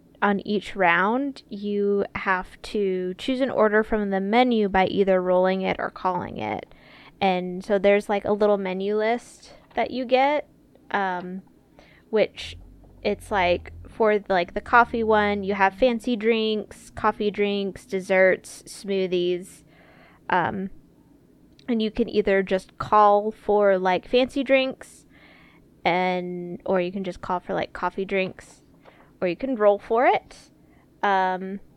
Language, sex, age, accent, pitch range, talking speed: English, female, 20-39, American, 185-210 Hz, 140 wpm